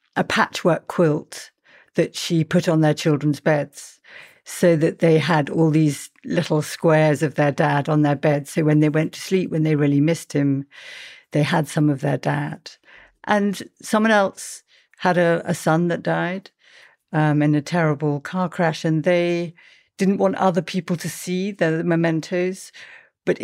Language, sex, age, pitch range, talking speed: English, female, 50-69, 155-180 Hz, 170 wpm